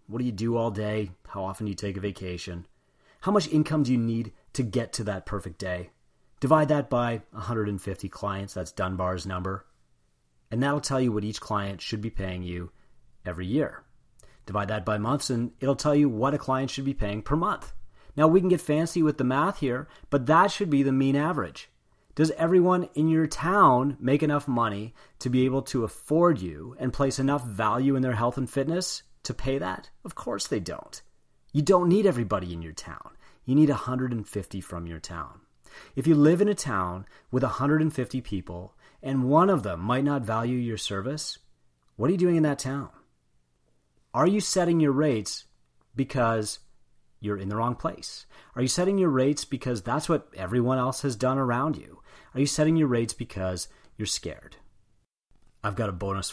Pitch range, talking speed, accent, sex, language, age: 95-140 Hz, 195 wpm, American, male, English, 30-49